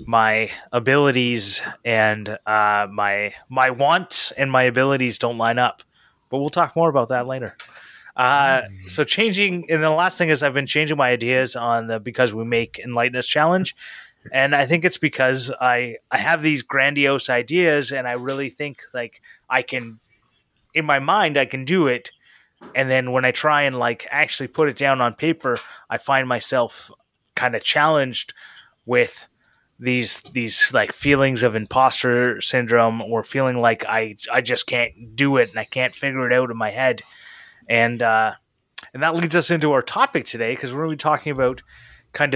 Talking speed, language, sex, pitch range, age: 185 wpm, English, male, 120-140 Hz, 20-39